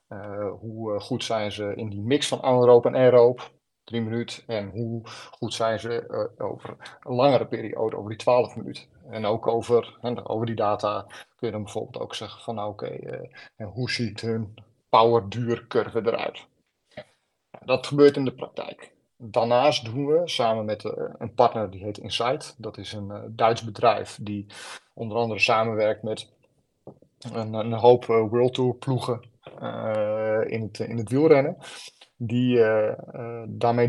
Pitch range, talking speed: 110-125 Hz, 165 wpm